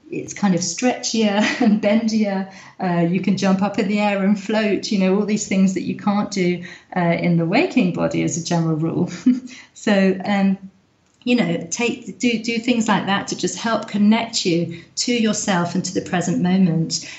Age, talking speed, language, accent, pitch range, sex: 40-59, 195 wpm, English, British, 180-235 Hz, female